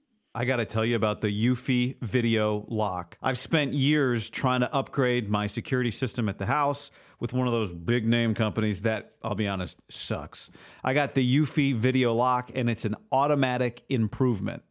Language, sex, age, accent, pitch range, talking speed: English, male, 40-59, American, 115-145 Hz, 180 wpm